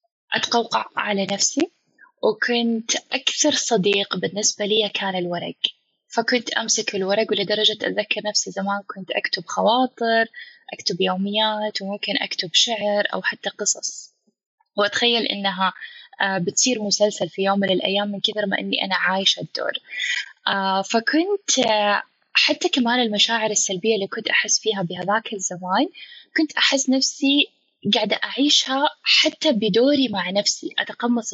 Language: Arabic